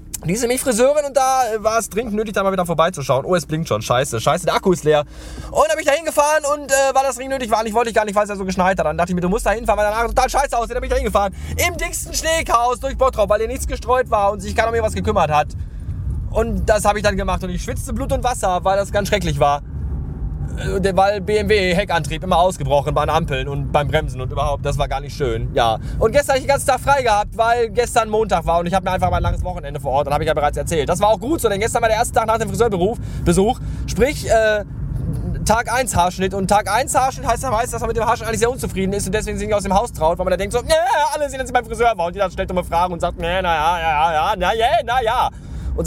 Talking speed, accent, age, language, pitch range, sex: 300 wpm, German, 20-39, German, 170-245 Hz, male